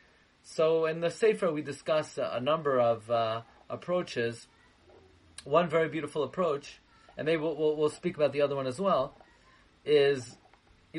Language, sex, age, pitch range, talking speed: English, male, 40-59, 130-165 Hz, 155 wpm